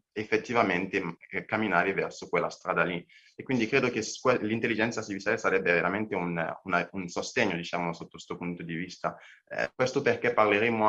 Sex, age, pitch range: male, 20-39, 90-115 Hz